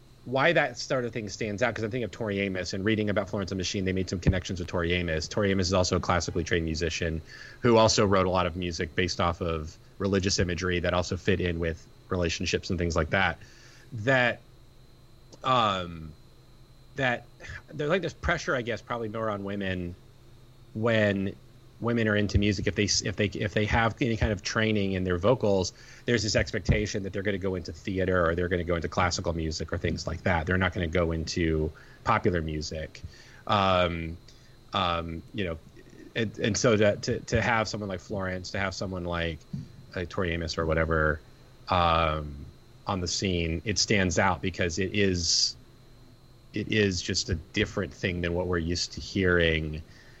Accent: American